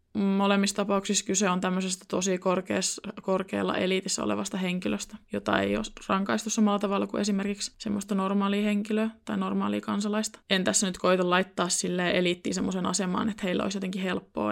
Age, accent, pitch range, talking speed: 20-39, native, 190-220 Hz, 160 wpm